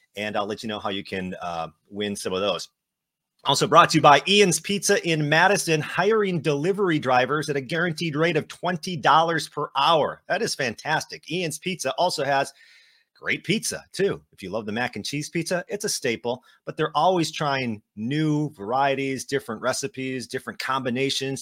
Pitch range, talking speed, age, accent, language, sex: 130-180 Hz, 180 wpm, 30-49, American, English, male